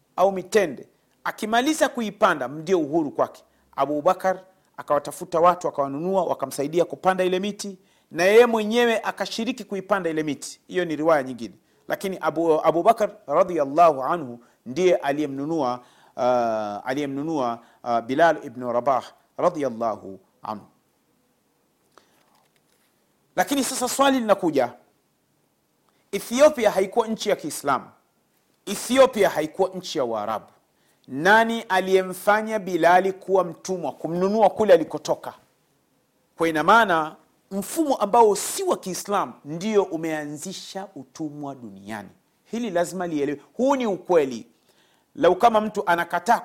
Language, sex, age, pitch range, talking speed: Swahili, male, 40-59, 155-210 Hz, 110 wpm